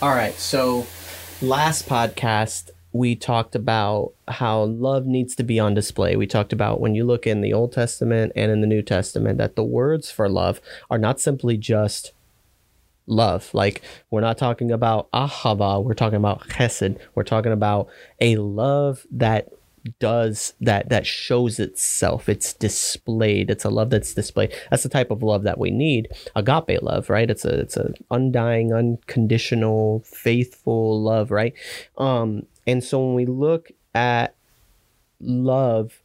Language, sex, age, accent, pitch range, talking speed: English, male, 30-49, American, 110-125 Hz, 160 wpm